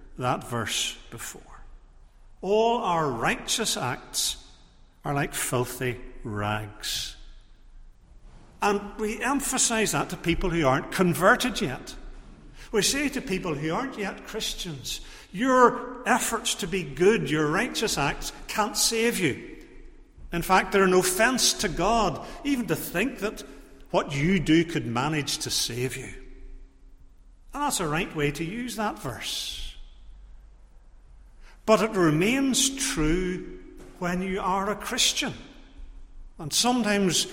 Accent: British